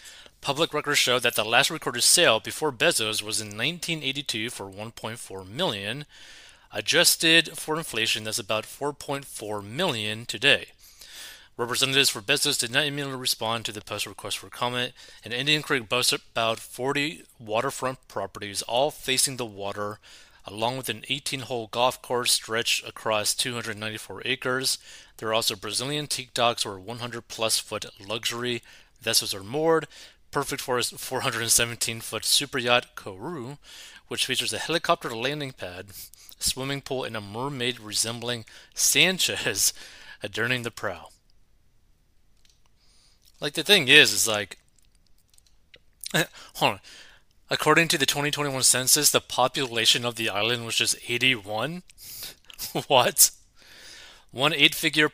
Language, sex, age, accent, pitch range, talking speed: English, male, 30-49, American, 110-140 Hz, 130 wpm